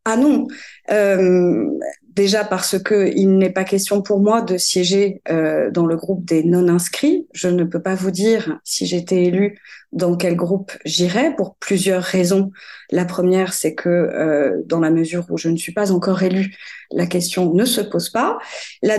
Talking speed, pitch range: 185 wpm, 180-210 Hz